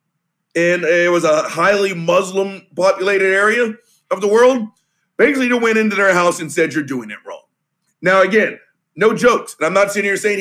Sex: male